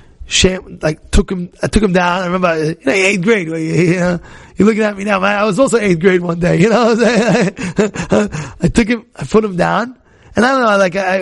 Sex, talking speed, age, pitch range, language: male, 240 wpm, 20-39, 140-220 Hz, English